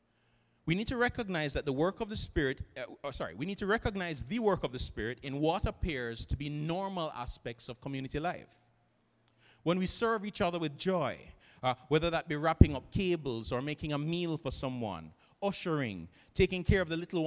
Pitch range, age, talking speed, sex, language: 140-185 Hz, 30-49, 200 wpm, male, English